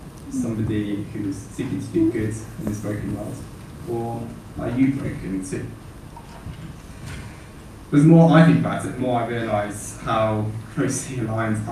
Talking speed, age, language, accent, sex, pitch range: 145 wpm, 10-29, English, British, male, 110-135 Hz